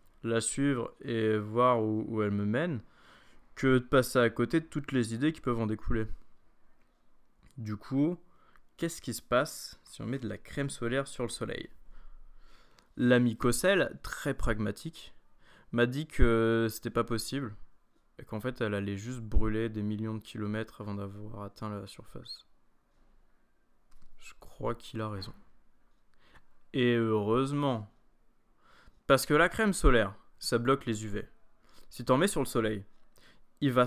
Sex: male